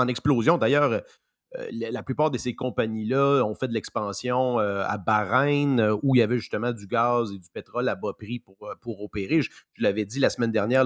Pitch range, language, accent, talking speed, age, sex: 115-150 Hz, French, Canadian, 215 wpm, 30-49, male